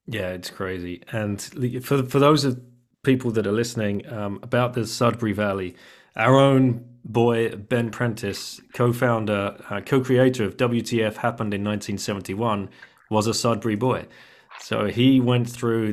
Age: 30-49